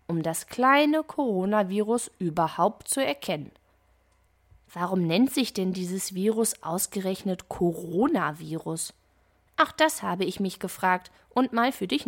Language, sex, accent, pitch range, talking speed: German, female, German, 160-235 Hz, 125 wpm